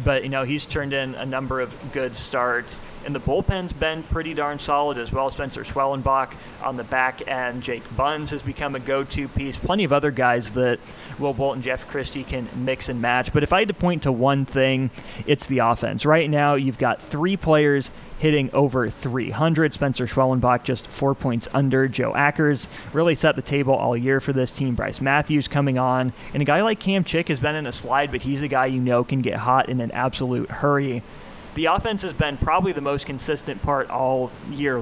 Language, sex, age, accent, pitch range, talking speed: English, male, 30-49, American, 130-150 Hz, 215 wpm